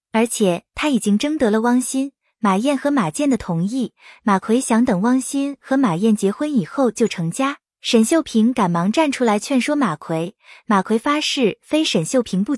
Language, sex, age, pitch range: Chinese, female, 20-39, 205-280 Hz